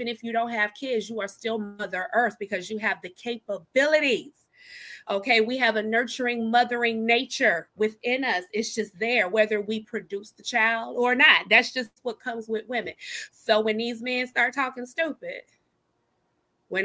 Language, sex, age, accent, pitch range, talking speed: English, female, 30-49, American, 220-280 Hz, 170 wpm